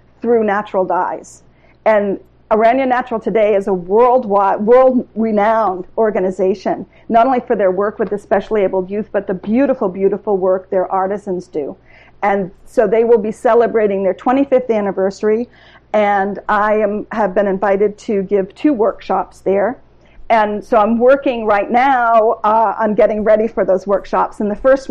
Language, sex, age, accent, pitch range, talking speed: English, female, 50-69, American, 195-225 Hz, 155 wpm